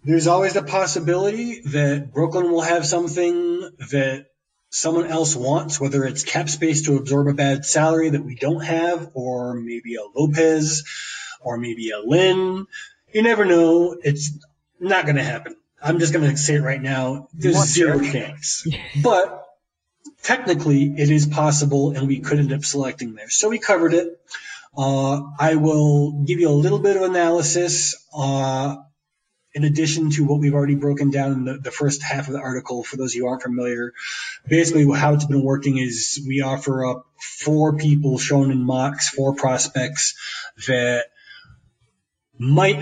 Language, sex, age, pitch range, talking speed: English, male, 20-39, 135-165 Hz, 170 wpm